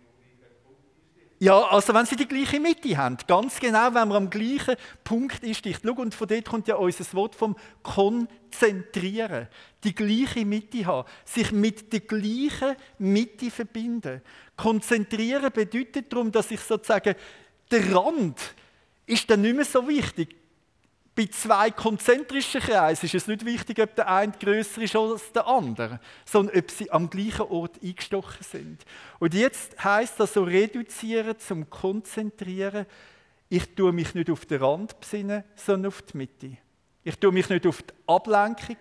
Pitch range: 185-230 Hz